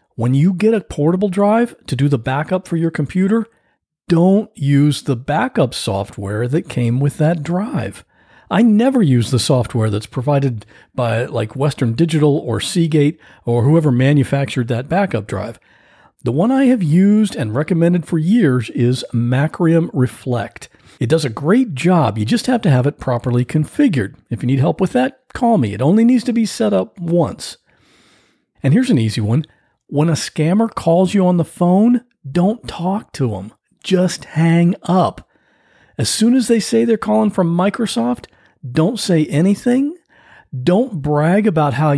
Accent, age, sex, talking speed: American, 50-69, male, 170 wpm